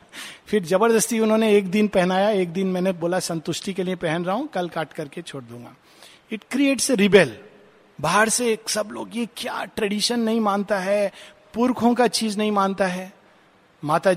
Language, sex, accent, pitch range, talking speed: Hindi, male, native, 155-215 Hz, 175 wpm